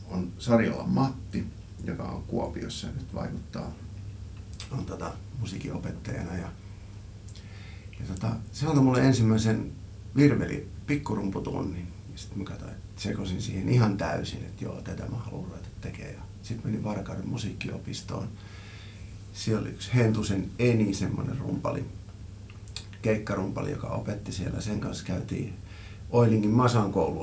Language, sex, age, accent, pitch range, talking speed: Finnish, male, 50-69, native, 95-115 Hz, 110 wpm